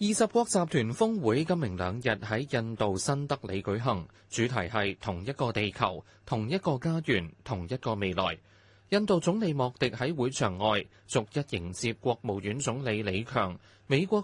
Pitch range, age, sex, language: 100-140 Hz, 20-39, male, Chinese